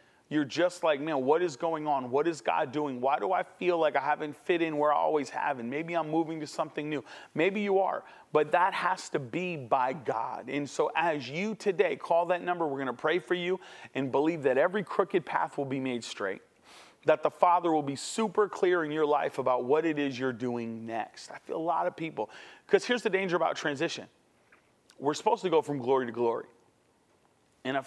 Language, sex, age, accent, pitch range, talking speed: English, male, 40-59, American, 145-230 Hz, 225 wpm